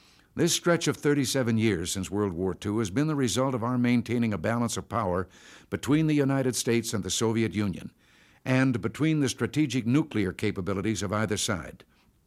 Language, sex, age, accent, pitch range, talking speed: English, male, 60-79, American, 105-135 Hz, 180 wpm